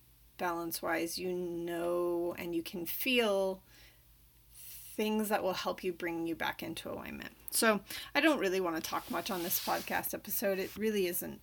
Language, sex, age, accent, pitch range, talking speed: English, female, 30-49, American, 165-220 Hz, 170 wpm